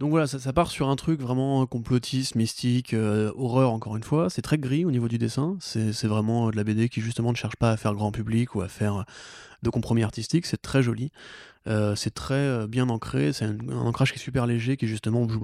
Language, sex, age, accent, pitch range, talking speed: French, male, 20-39, French, 110-130 Hz, 245 wpm